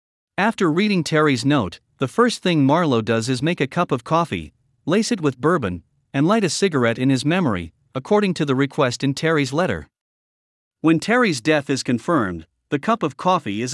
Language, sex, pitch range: English, male, 125-185 Hz